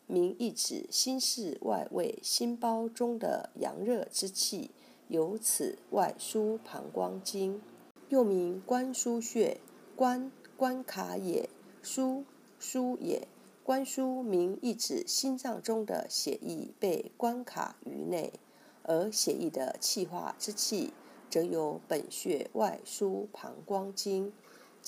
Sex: female